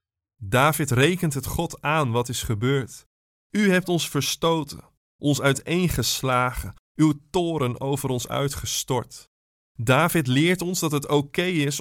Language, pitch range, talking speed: Dutch, 125-155 Hz, 130 wpm